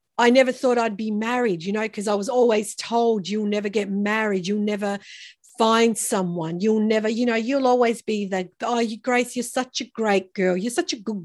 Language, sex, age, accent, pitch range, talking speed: English, female, 50-69, Australian, 200-255 Hz, 215 wpm